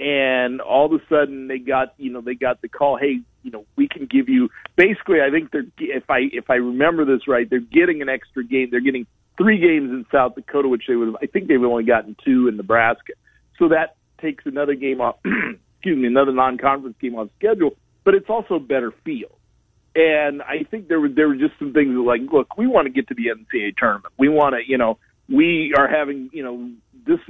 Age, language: 50-69, English